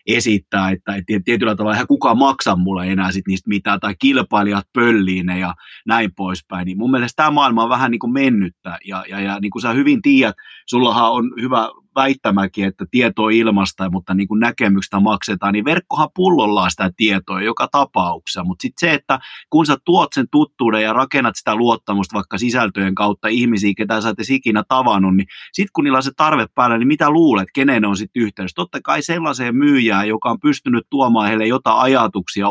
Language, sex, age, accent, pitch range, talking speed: Finnish, male, 30-49, native, 100-130 Hz, 195 wpm